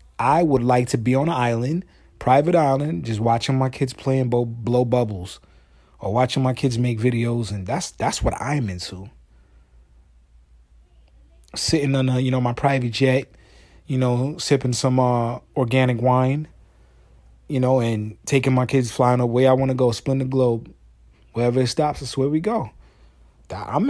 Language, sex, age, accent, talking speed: English, male, 30-49, American, 170 wpm